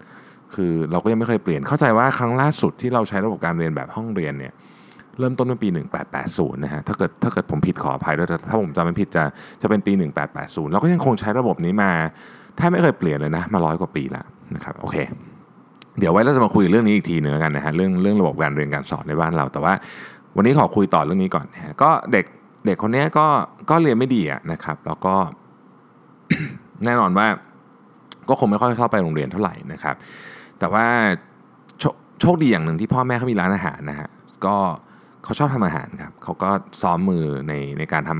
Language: Thai